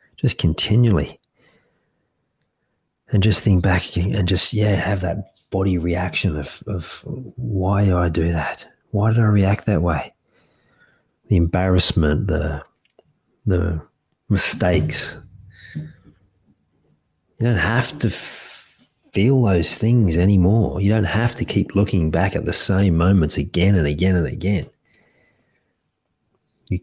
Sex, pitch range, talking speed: male, 80-105 Hz, 125 wpm